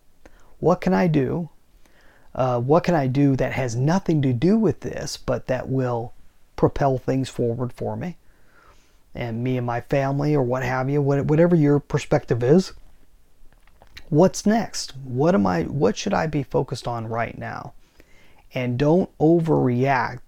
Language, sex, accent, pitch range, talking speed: English, male, American, 125-160 Hz, 150 wpm